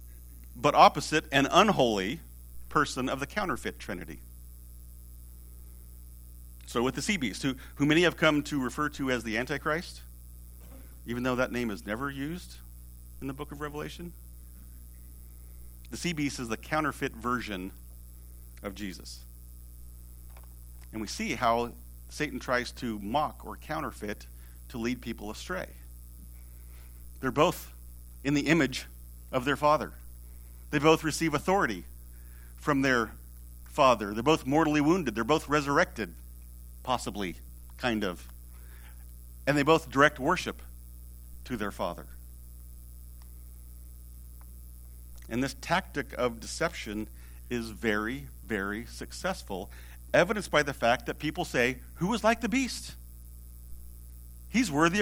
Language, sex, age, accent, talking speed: English, male, 50-69, American, 125 wpm